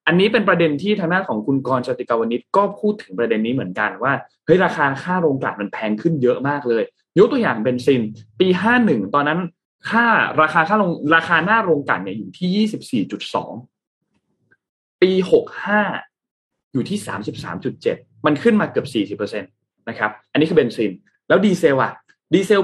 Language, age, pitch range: Thai, 20-39, 125-210 Hz